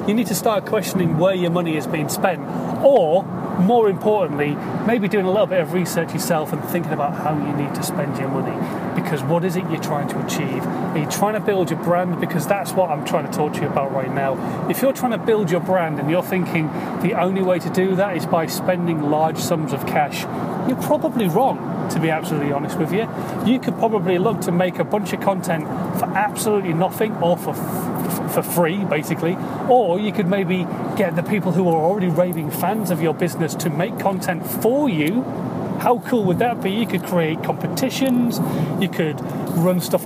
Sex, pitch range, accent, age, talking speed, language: male, 170-205 Hz, British, 30-49, 215 wpm, English